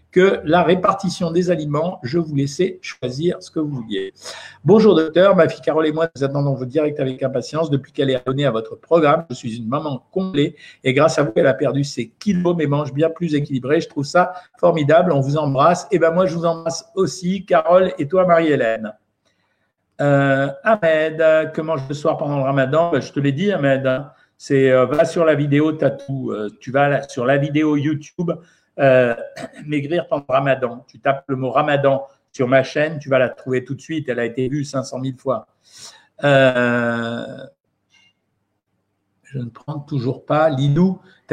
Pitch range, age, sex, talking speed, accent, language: 135-160 Hz, 50-69, male, 195 wpm, French, French